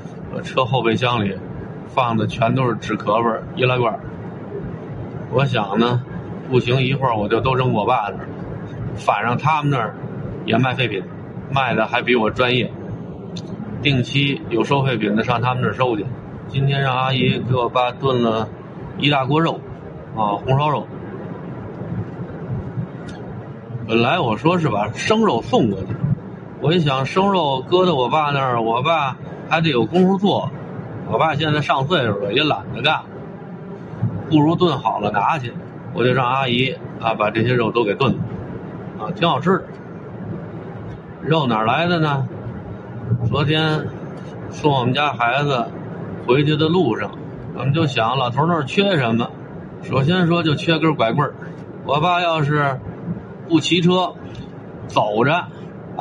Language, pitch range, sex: Chinese, 120-160 Hz, male